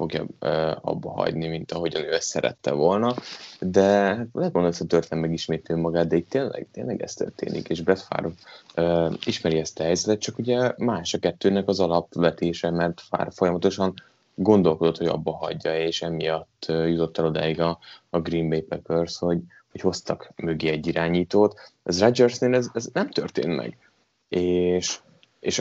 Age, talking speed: 20-39, 160 wpm